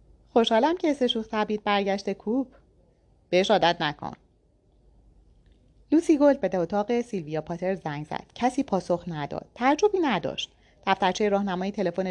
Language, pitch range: Persian, 175-255 Hz